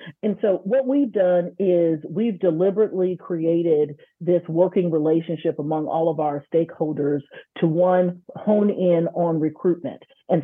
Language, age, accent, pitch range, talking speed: English, 40-59, American, 165-205 Hz, 140 wpm